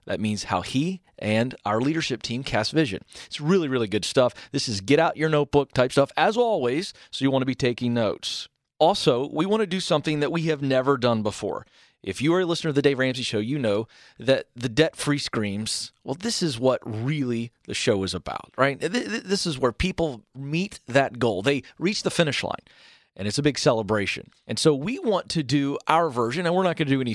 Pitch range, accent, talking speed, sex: 125-160 Hz, American, 220 wpm, male